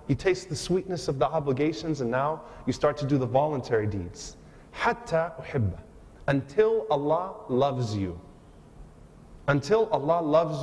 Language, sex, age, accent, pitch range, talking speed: English, male, 30-49, American, 130-175 Hz, 135 wpm